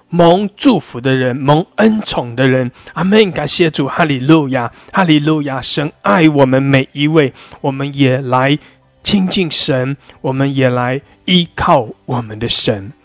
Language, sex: English, male